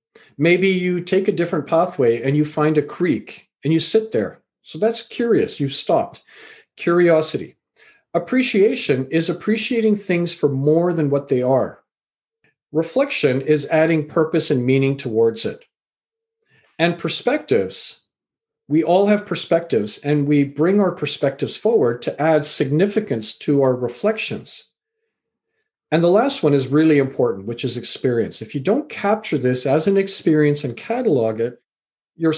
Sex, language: male, English